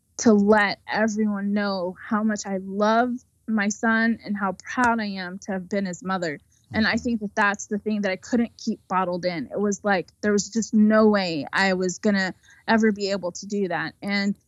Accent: American